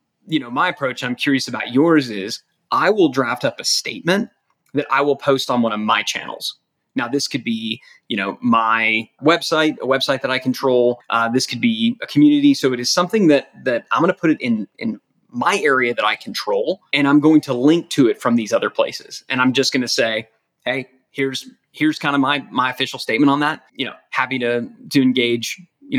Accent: American